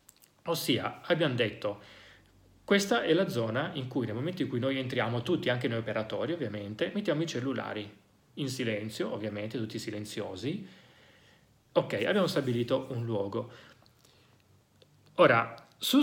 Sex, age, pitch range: male, 40-59, 110-150 Hz